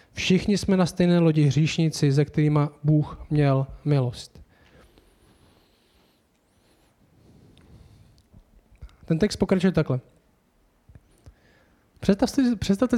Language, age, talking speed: Czech, 20-39, 80 wpm